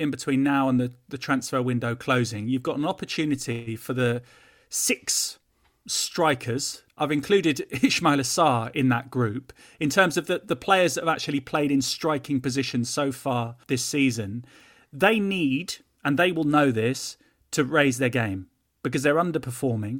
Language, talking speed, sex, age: English, 165 wpm, male, 30-49